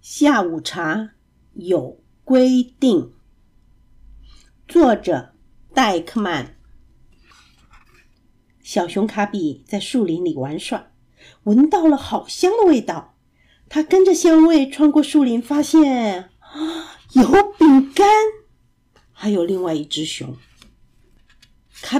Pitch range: 210-320 Hz